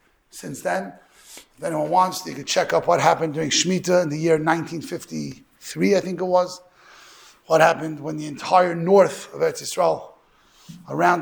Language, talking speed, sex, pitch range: English, 165 wpm, male, 160-205 Hz